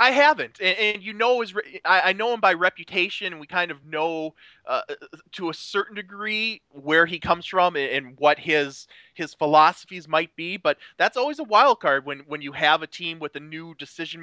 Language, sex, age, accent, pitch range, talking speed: English, male, 20-39, American, 140-180 Hz, 200 wpm